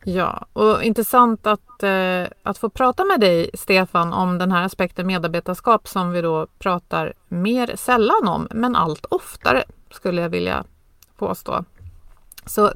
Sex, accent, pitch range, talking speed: female, native, 180-220 Hz, 140 wpm